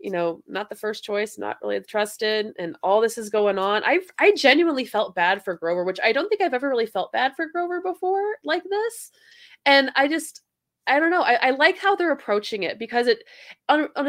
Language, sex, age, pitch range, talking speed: English, female, 20-39, 190-290 Hz, 225 wpm